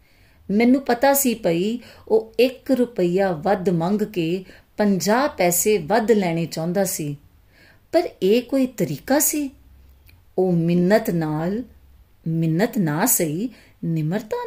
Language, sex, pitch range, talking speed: Punjabi, female, 170-225 Hz, 115 wpm